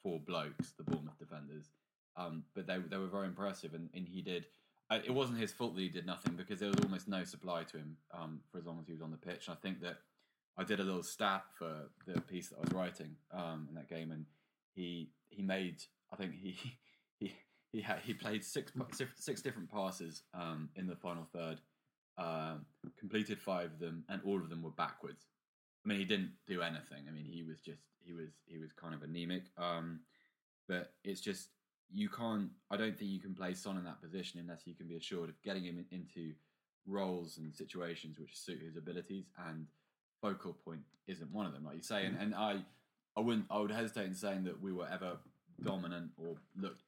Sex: male